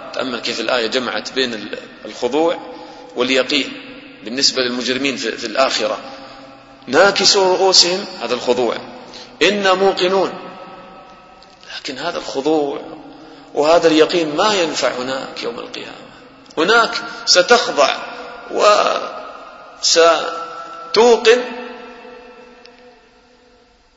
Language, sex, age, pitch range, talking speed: English, male, 40-59, 150-250 Hz, 75 wpm